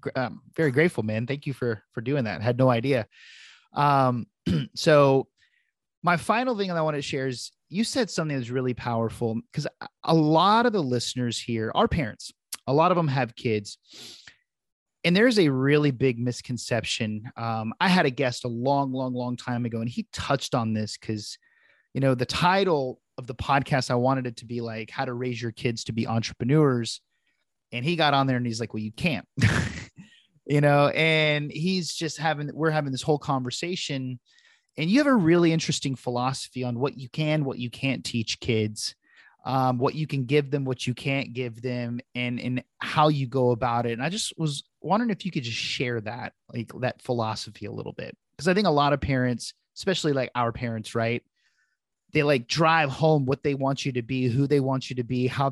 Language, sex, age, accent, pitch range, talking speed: English, male, 30-49, American, 120-150 Hz, 210 wpm